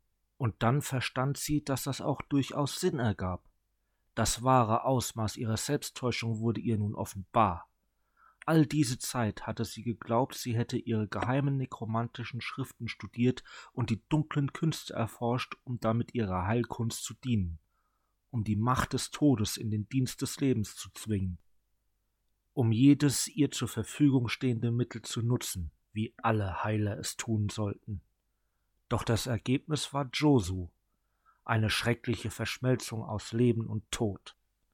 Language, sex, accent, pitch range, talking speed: German, male, German, 105-130 Hz, 140 wpm